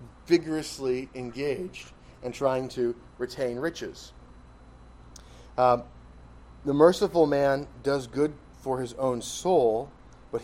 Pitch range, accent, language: 110-140 Hz, American, English